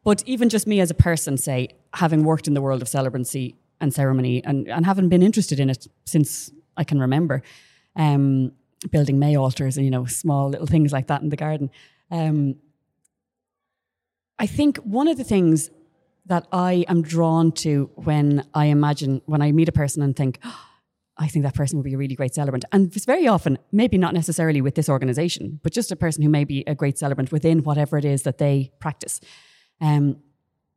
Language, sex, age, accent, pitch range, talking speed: English, female, 20-39, Irish, 140-175 Hz, 205 wpm